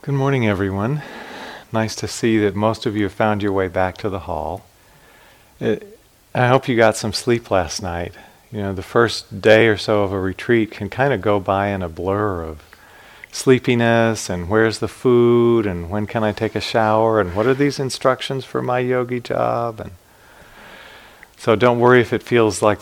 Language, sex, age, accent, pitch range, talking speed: English, male, 40-59, American, 95-115 Hz, 195 wpm